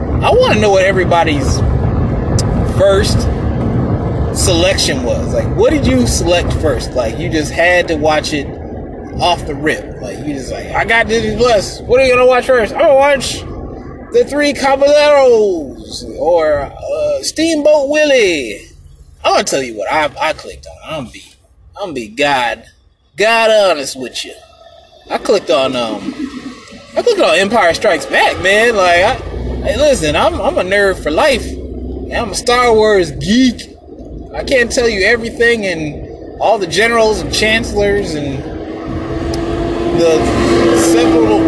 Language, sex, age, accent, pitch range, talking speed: English, male, 20-39, American, 180-300 Hz, 150 wpm